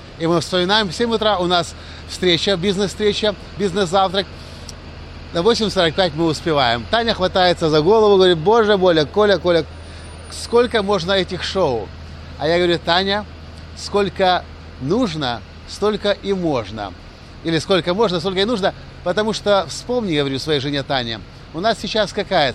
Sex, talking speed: male, 145 wpm